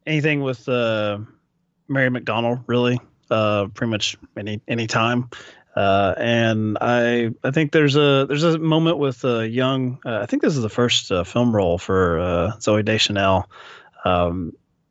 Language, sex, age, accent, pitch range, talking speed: English, male, 30-49, American, 110-145 Hz, 160 wpm